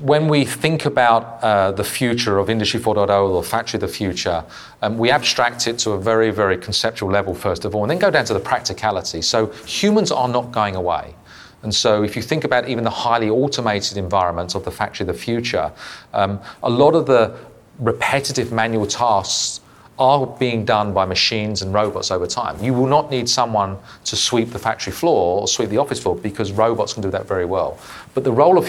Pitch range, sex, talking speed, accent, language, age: 105-125 Hz, male, 215 wpm, British, English, 40-59